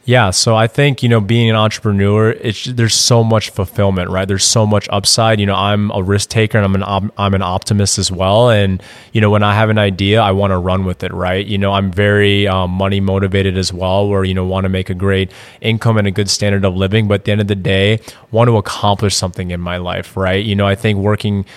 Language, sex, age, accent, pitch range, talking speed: English, male, 20-39, American, 95-110 Hz, 260 wpm